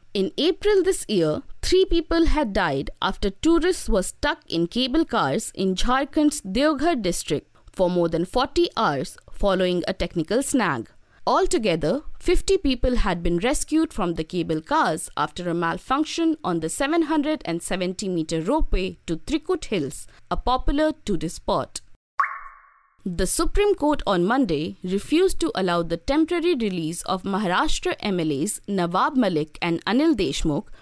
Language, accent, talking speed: English, Indian, 140 wpm